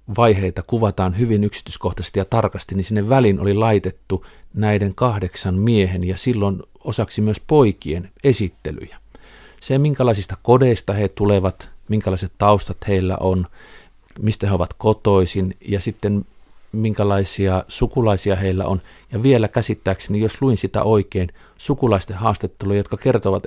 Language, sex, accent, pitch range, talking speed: Finnish, male, native, 90-110 Hz, 130 wpm